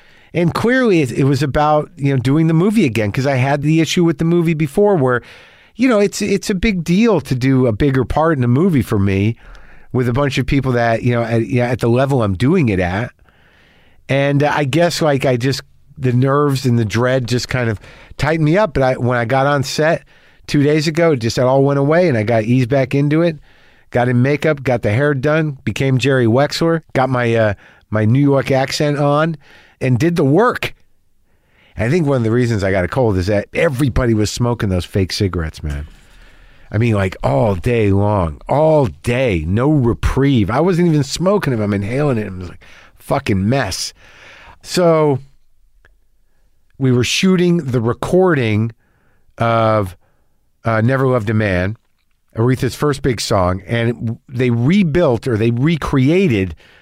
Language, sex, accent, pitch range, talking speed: English, male, American, 110-150 Hz, 195 wpm